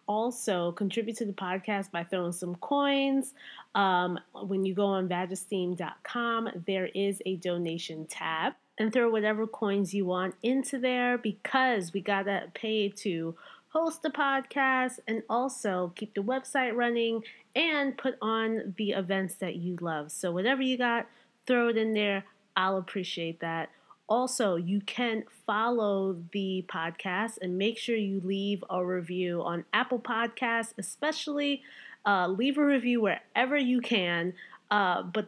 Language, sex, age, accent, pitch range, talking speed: English, female, 20-39, American, 185-240 Hz, 150 wpm